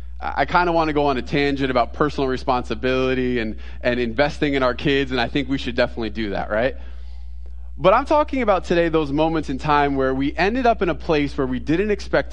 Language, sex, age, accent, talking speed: English, male, 20-39, American, 230 wpm